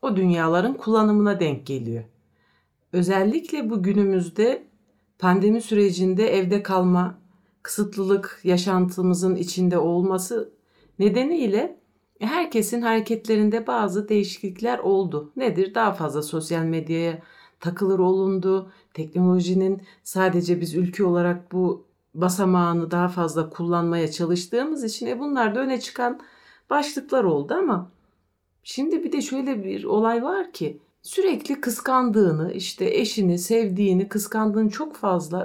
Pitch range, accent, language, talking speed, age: 185-230 Hz, native, Turkish, 110 wpm, 50-69